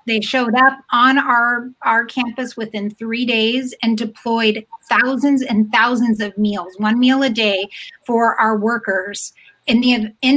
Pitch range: 210-255 Hz